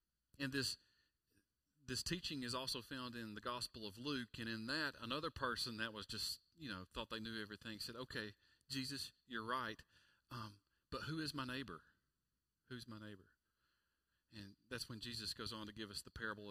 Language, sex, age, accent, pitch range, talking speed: English, male, 40-59, American, 95-130 Hz, 185 wpm